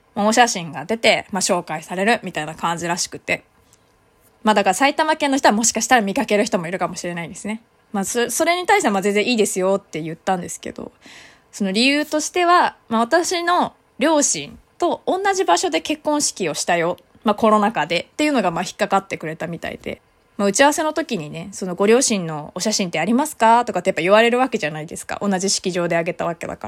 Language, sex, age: Japanese, female, 20-39